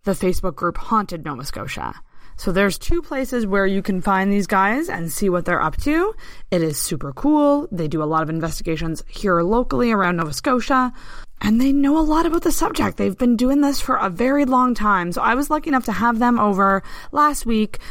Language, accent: English, American